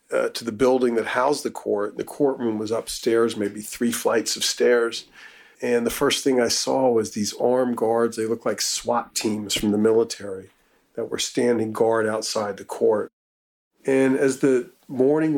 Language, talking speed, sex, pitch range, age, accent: English, 175 wpm, male, 110-130 Hz, 40-59, American